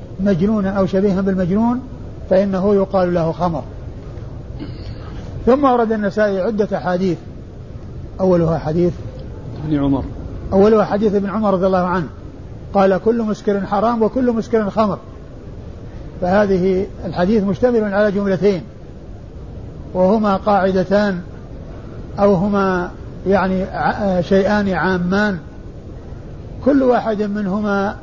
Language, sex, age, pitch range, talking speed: Arabic, male, 50-69, 180-215 Hz, 100 wpm